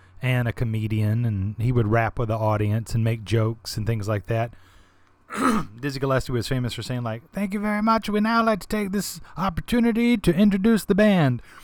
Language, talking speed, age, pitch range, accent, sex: English, 200 wpm, 30-49, 105-140 Hz, American, male